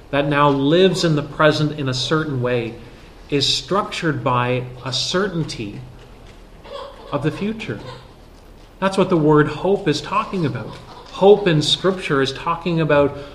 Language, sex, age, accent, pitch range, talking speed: English, male, 30-49, American, 125-155 Hz, 145 wpm